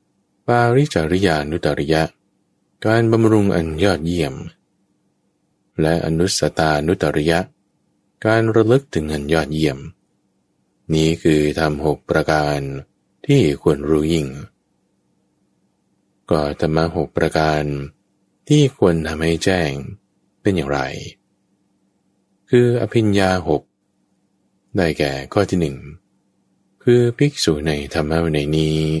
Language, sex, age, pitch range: English, male, 20-39, 80-100 Hz